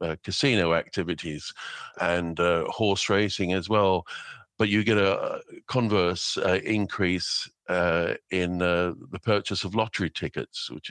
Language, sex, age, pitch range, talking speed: English, male, 50-69, 85-100 Hz, 145 wpm